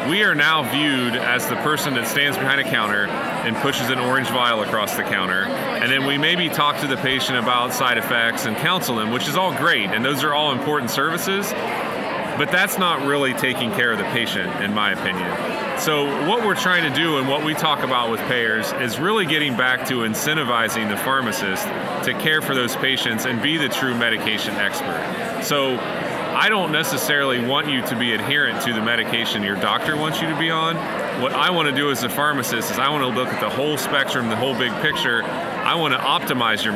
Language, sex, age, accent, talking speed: English, male, 30-49, American, 210 wpm